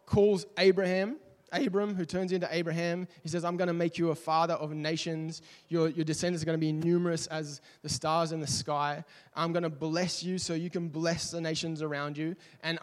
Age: 20-39